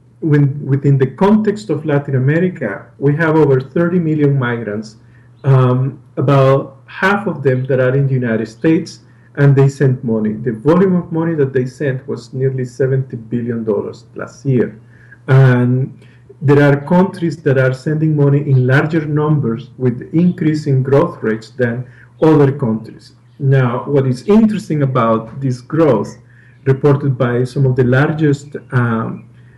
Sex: male